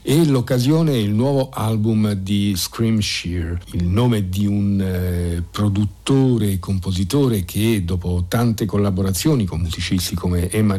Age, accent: 50-69, native